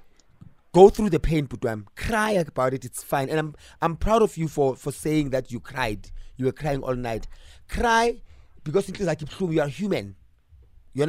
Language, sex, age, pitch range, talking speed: English, male, 30-49, 125-165 Hz, 190 wpm